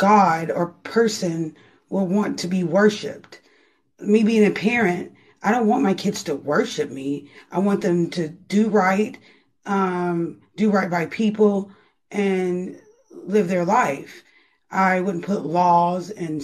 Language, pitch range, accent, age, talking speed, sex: English, 170-195 Hz, American, 30-49, 145 wpm, female